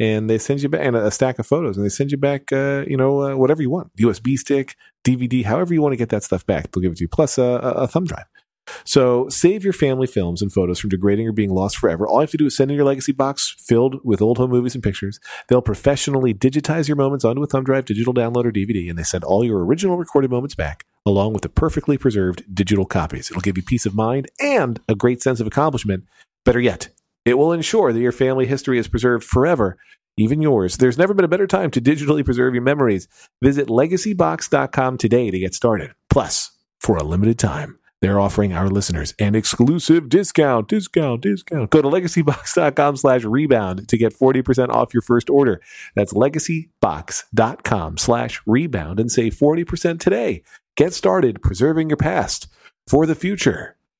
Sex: male